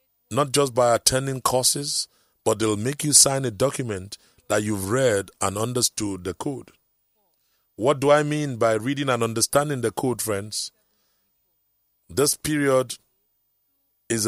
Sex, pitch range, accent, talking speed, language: male, 110-140 Hz, Nigerian, 140 wpm, English